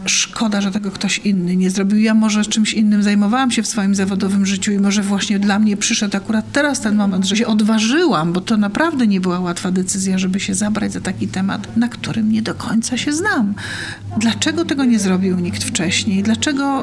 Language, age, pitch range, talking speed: Polish, 40-59, 190-220 Hz, 205 wpm